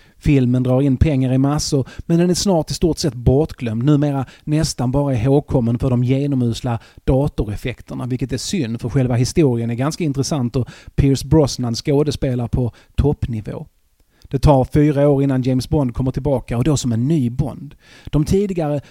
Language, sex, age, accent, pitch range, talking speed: Swedish, male, 30-49, native, 120-145 Hz, 170 wpm